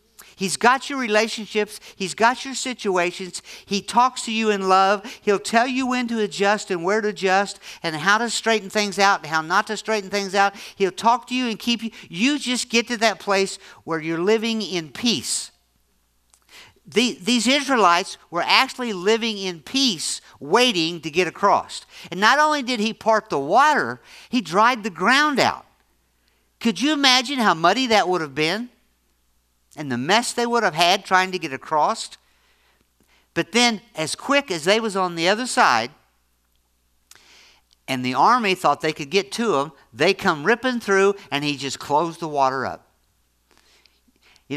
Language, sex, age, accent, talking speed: English, male, 50-69, American, 175 wpm